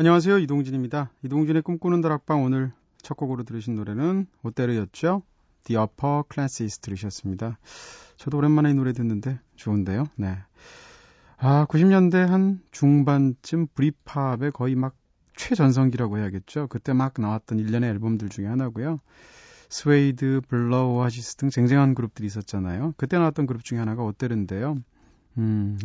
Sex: male